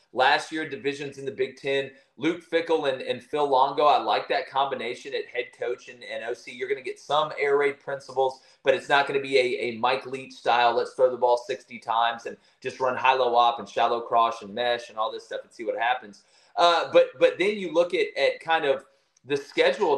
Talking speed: 230 wpm